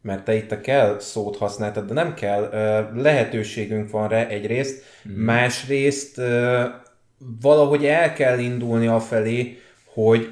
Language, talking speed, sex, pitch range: Hungarian, 130 wpm, male, 105-125 Hz